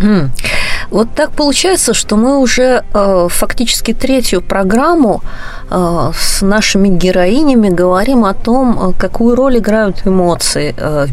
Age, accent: 30-49, native